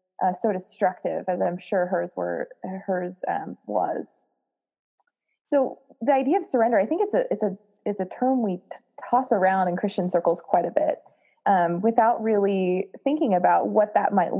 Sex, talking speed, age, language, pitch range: female, 180 wpm, 20-39, English, 180-220 Hz